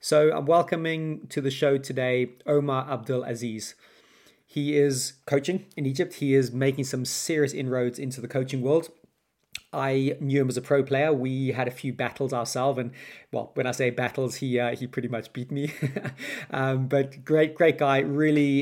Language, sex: English, male